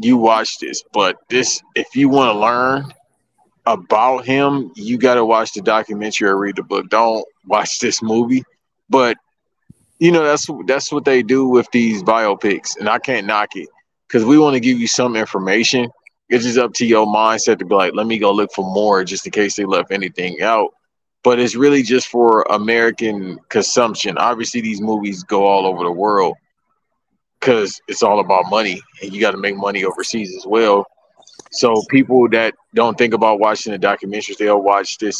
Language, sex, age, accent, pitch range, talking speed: English, male, 20-39, American, 105-125 Hz, 195 wpm